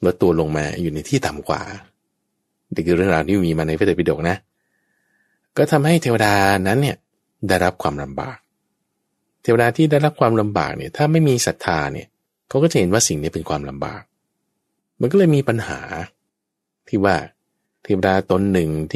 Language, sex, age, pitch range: Thai, male, 20-39, 95-120 Hz